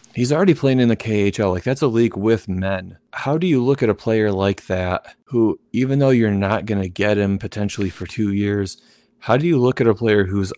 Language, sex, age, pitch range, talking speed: English, male, 30-49, 95-110 Hz, 240 wpm